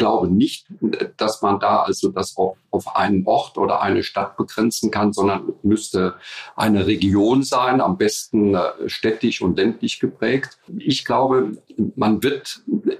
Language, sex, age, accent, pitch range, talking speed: English, male, 50-69, German, 100-120 Hz, 145 wpm